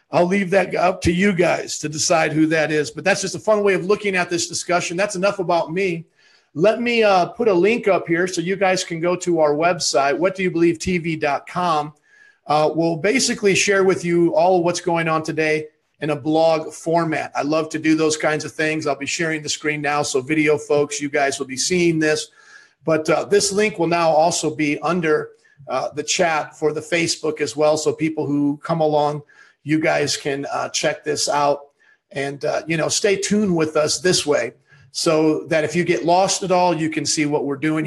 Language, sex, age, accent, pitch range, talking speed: English, male, 40-59, American, 150-180 Hz, 215 wpm